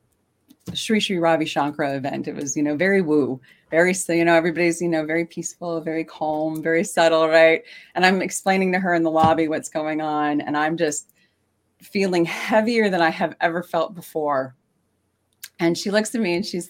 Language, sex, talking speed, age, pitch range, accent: English, female, 195 wpm, 30-49, 170-245 Hz, American